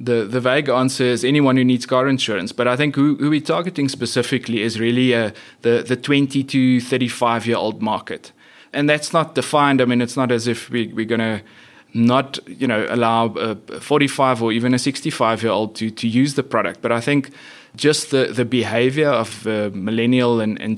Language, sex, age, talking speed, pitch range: English, male, 20-39, 215 wpm, 115-140 Hz